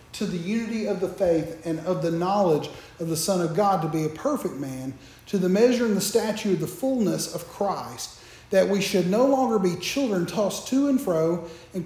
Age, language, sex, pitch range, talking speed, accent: 40-59, English, male, 160-225 Hz, 220 wpm, American